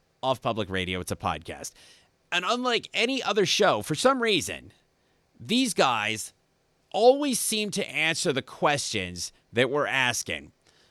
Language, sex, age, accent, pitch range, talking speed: English, male, 30-49, American, 115-165 Hz, 140 wpm